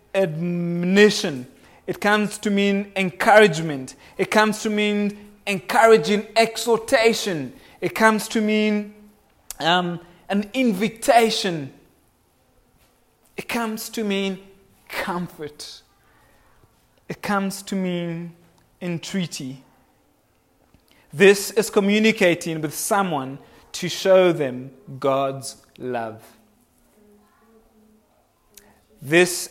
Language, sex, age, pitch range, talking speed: English, male, 30-49, 150-210 Hz, 80 wpm